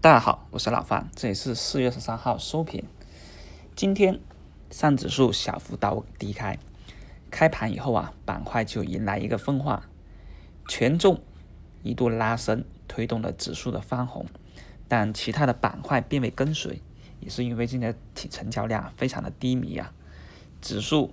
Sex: male